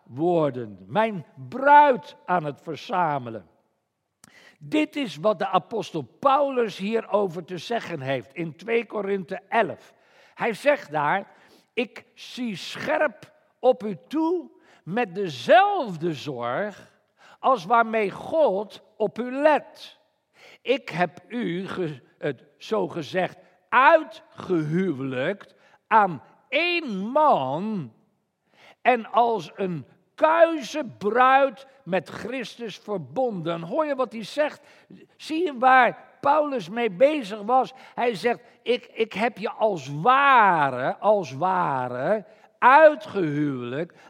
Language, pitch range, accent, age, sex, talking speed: Dutch, 180-270 Hz, Dutch, 60-79, male, 110 wpm